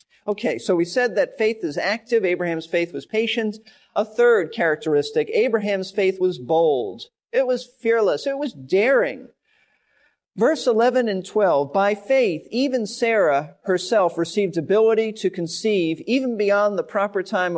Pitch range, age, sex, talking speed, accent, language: 170-235 Hz, 40-59, male, 145 wpm, American, English